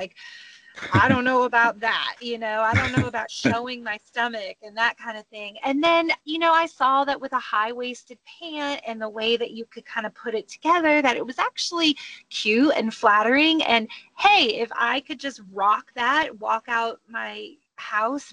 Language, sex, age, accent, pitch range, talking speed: English, female, 30-49, American, 225-300 Hz, 205 wpm